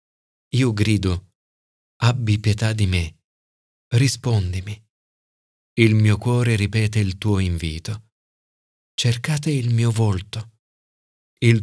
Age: 40-59